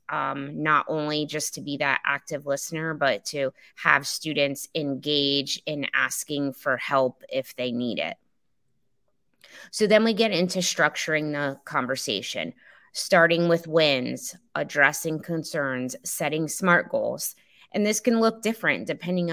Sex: female